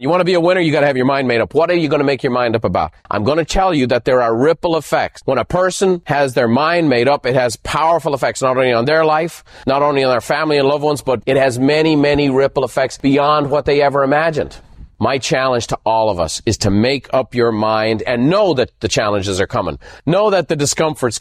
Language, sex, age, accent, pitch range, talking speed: English, male, 40-59, American, 125-165 Hz, 265 wpm